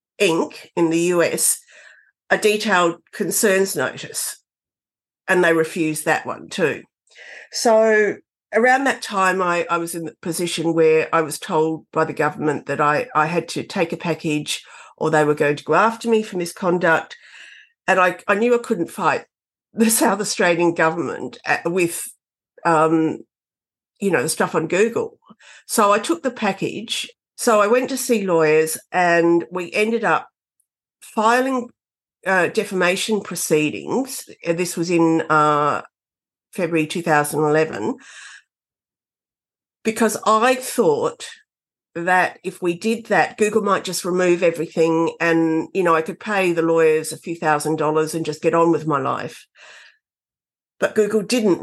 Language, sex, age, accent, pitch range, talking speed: English, female, 50-69, Australian, 160-215 Hz, 150 wpm